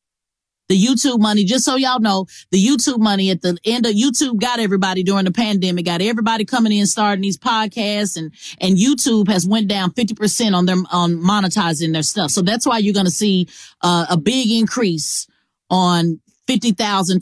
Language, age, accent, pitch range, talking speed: English, 30-49, American, 175-210 Hz, 185 wpm